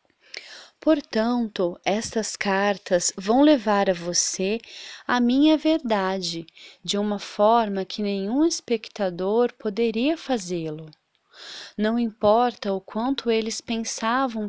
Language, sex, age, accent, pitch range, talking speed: English, female, 20-39, Brazilian, 190-250 Hz, 100 wpm